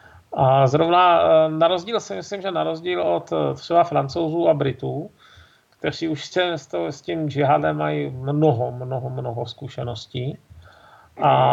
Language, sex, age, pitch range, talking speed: Czech, male, 40-59, 130-160 Hz, 130 wpm